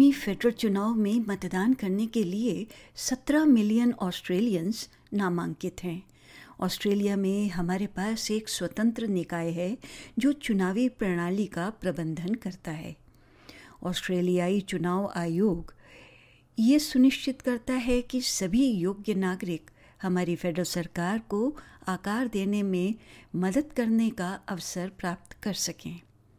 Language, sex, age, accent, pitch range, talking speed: Hindi, female, 60-79, native, 180-230 Hz, 115 wpm